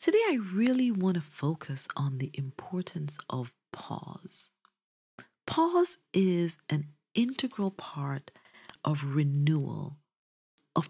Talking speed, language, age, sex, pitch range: 105 wpm, English, 40-59, female, 155-205 Hz